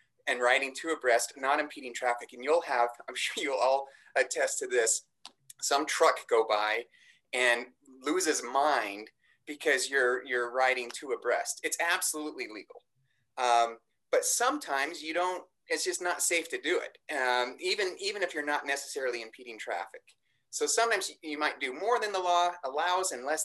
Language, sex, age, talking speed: English, male, 30-49, 170 wpm